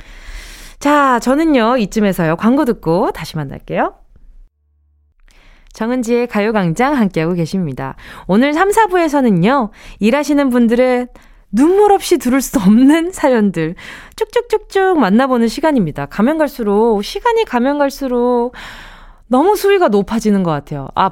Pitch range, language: 185-275 Hz, Korean